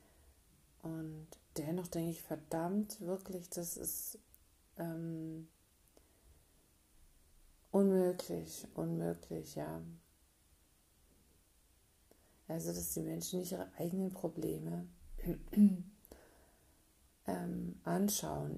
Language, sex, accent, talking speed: German, female, German, 70 wpm